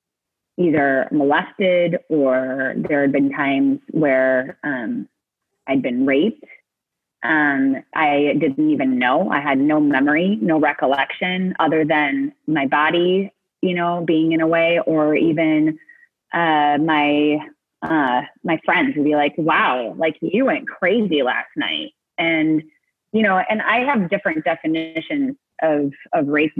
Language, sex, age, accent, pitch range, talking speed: English, female, 30-49, American, 150-195 Hz, 140 wpm